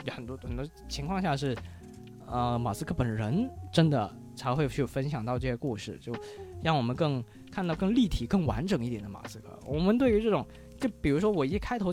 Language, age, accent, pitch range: Chinese, 20-39, native, 120-180 Hz